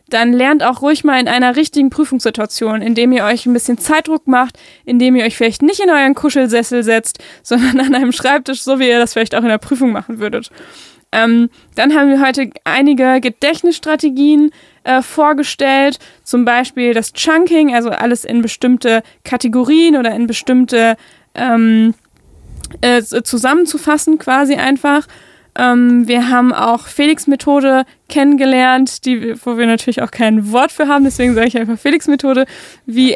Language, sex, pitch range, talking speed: German, female, 240-280 Hz, 155 wpm